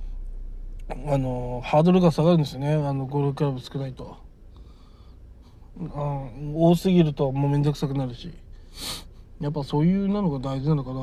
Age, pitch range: 20-39, 125-160 Hz